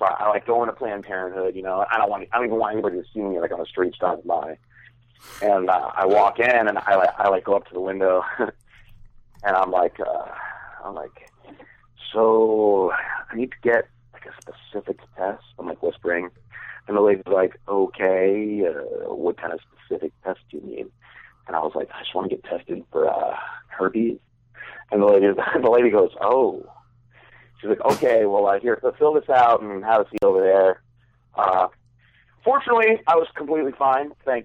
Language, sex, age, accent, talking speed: English, male, 40-59, American, 200 wpm